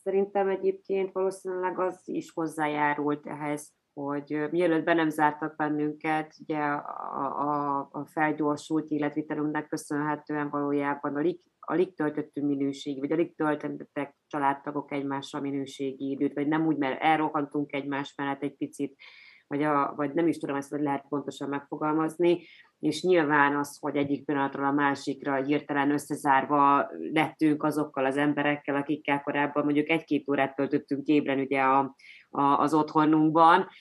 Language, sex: English, female